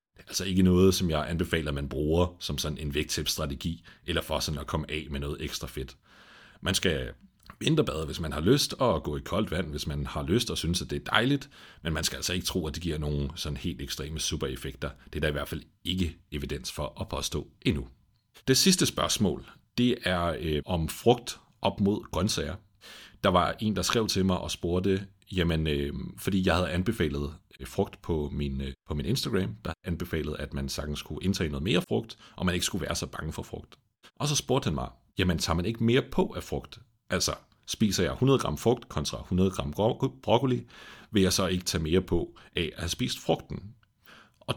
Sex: male